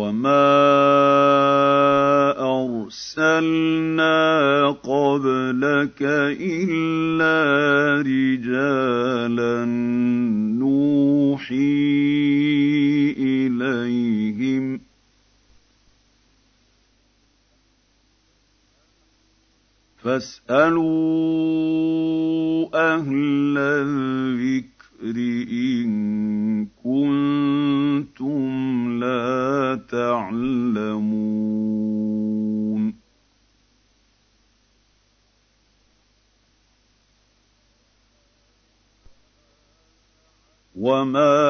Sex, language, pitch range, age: male, Arabic, 120-160 Hz, 50-69